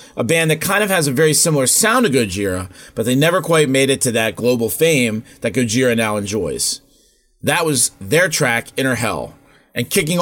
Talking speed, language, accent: 200 wpm, English, American